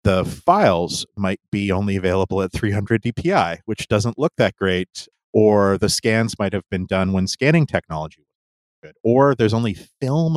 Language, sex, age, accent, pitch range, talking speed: English, male, 30-49, American, 90-115 Hz, 175 wpm